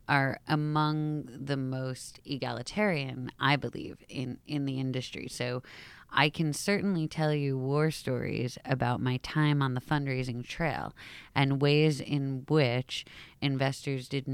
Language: English